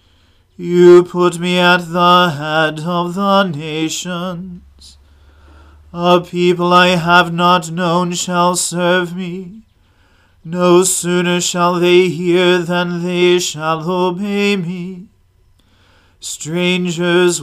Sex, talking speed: male, 100 wpm